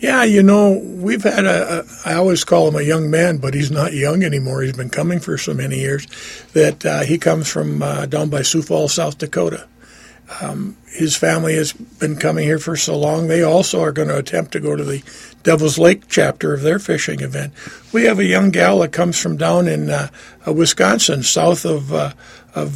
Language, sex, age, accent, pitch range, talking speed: English, male, 50-69, American, 140-170 Hz, 215 wpm